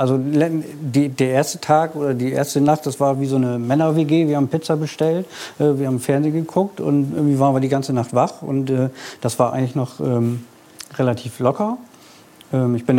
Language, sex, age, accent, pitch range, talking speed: German, male, 50-69, German, 125-150 Hz, 205 wpm